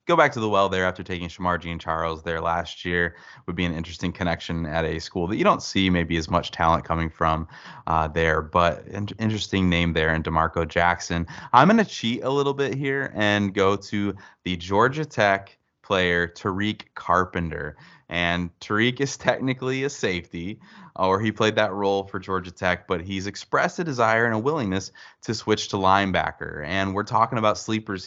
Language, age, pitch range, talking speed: English, 20-39, 85-105 Hz, 190 wpm